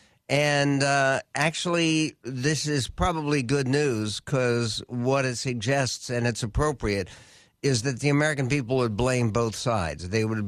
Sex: male